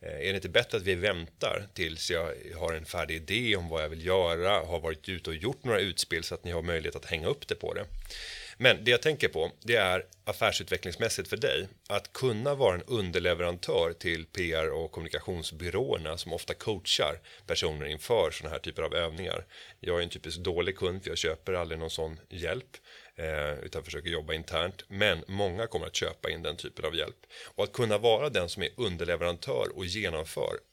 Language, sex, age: Swedish, male, 30-49